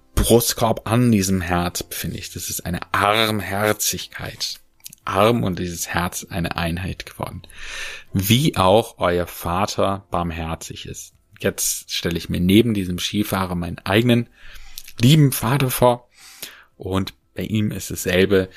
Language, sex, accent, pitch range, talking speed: German, male, German, 85-110 Hz, 130 wpm